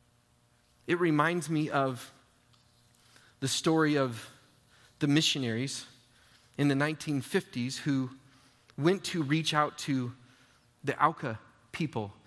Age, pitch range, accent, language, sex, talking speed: 30-49, 125-180 Hz, American, English, male, 105 wpm